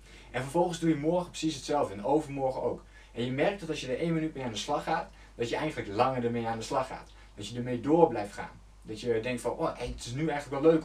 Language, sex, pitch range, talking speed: Dutch, male, 120-165 Hz, 275 wpm